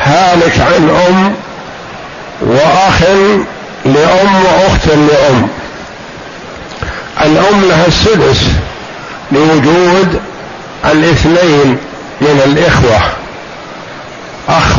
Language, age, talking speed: Arabic, 60-79, 60 wpm